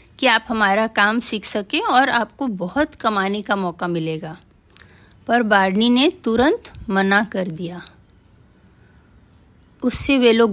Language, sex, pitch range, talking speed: Hindi, female, 200-260 Hz, 130 wpm